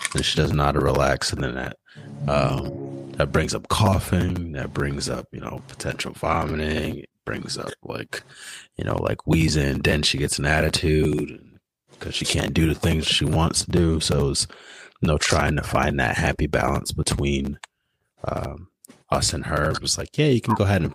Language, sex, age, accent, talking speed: English, male, 30-49, American, 190 wpm